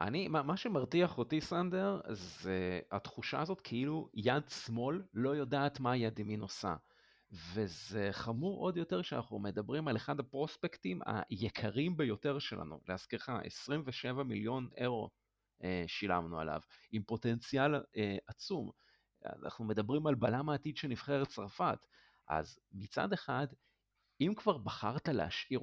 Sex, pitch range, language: male, 105-150 Hz, Hebrew